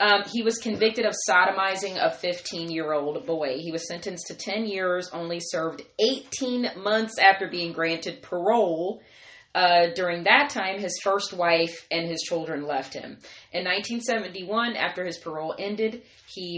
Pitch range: 160-200 Hz